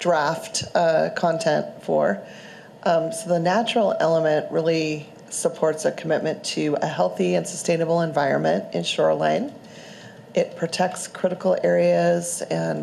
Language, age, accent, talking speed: English, 40-59, American, 120 wpm